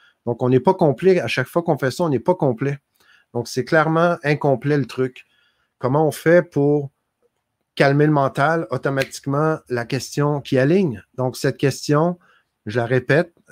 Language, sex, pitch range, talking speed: French, male, 125-145 Hz, 175 wpm